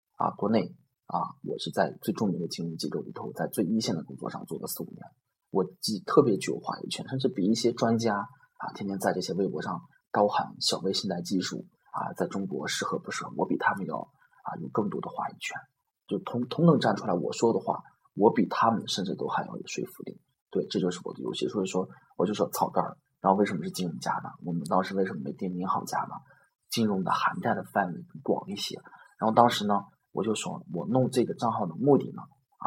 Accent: native